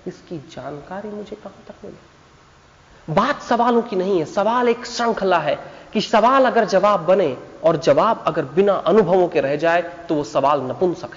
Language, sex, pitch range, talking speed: Hindi, male, 155-215 Hz, 170 wpm